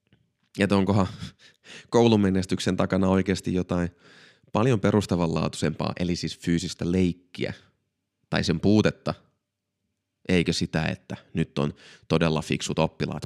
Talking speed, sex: 105 wpm, male